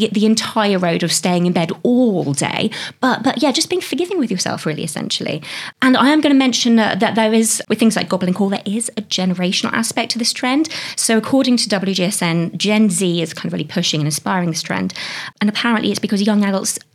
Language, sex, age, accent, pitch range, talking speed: English, female, 20-39, British, 180-230 Hz, 225 wpm